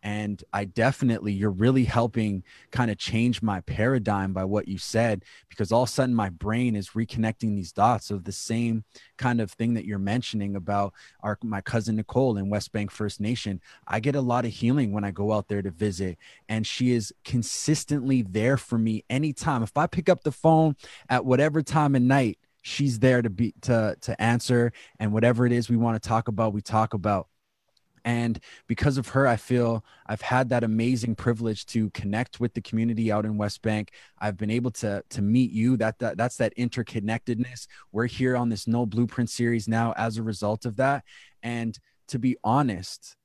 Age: 20-39